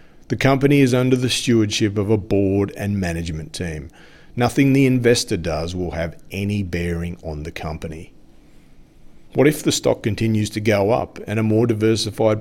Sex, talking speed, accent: male, 170 wpm, Australian